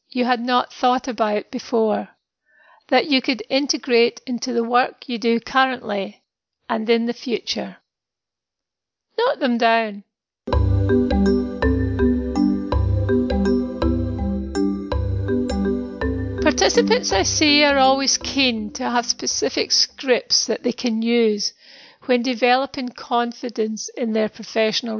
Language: English